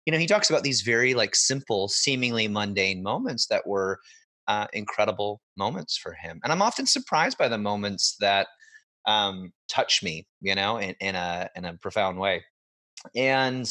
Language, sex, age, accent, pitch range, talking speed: English, male, 30-49, American, 95-120 Hz, 175 wpm